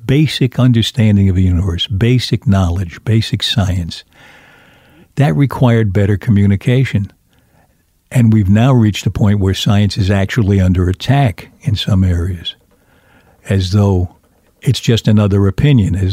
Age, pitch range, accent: 60-79, 95-120 Hz, American